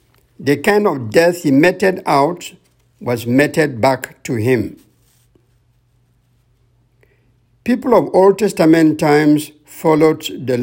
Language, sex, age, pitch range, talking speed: English, male, 60-79, 120-175 Hz, 105 wpm